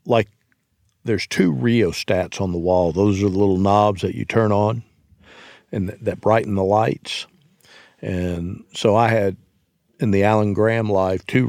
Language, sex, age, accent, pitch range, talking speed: English, male, 50-69, American, 95-115 Hz, 160 wpm